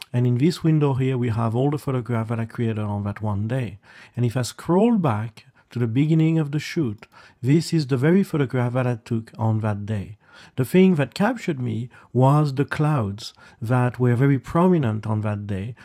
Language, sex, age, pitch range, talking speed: English, male, 40-59, 110-140 Hz, 205 wpm